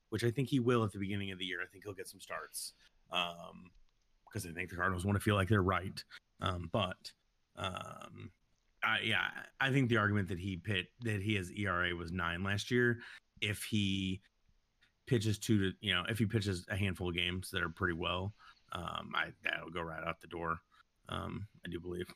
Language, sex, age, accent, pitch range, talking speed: English, male, 30-49, American, 90-110 Hz, 215 wpm